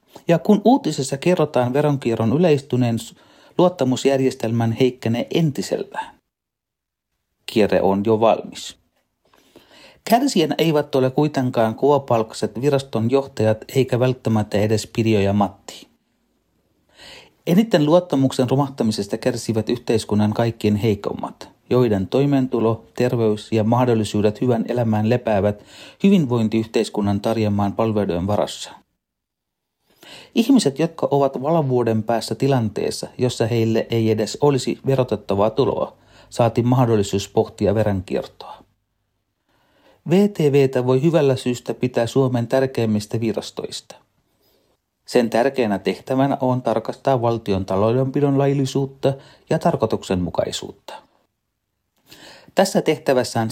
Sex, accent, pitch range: male, native, 110-135 Hz